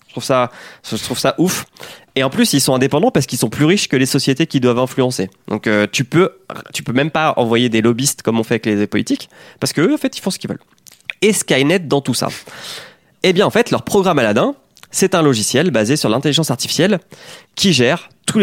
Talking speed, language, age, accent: 235 wpm, French, 20-39, French